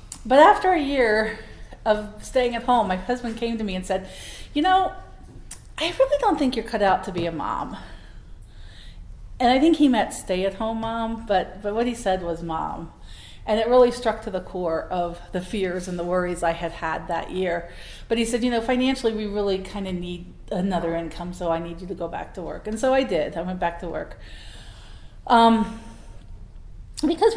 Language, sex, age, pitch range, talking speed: English, female, 40-59, 170-240 Hz, 205 wpm